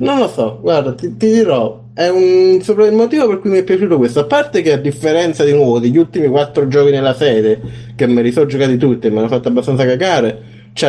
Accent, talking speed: native, 235 wpm